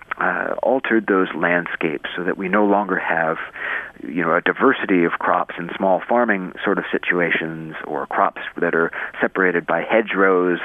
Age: 50-69